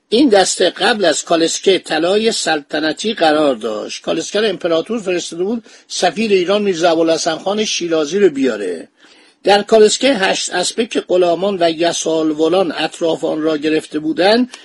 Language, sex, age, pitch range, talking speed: Persian, male, 50-69, 155-210 Hz, 135 wpm